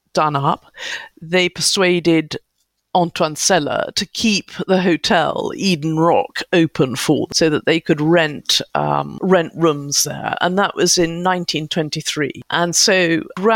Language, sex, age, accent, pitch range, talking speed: English, female, 50-69, British, 155-185 Hz, 130 wpm